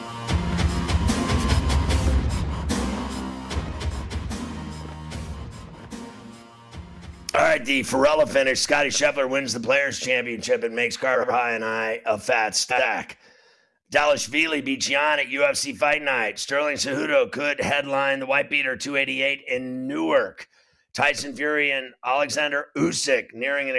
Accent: American